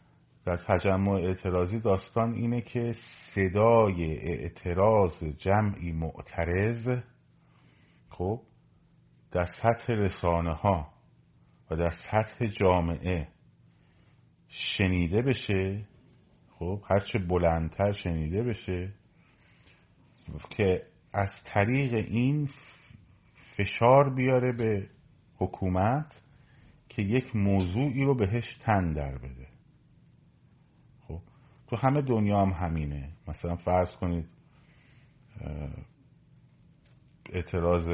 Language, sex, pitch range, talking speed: Persian, male, 85-120 Hz, 80 wpm